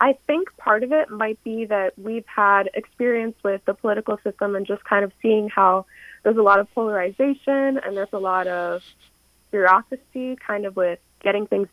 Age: 20-39